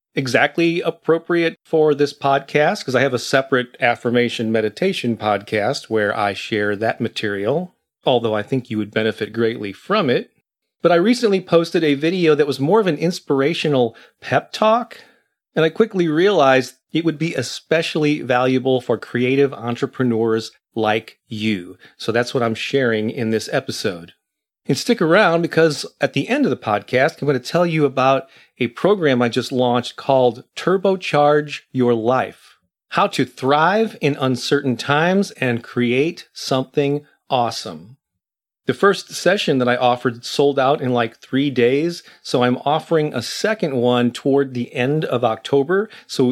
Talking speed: 160 wpm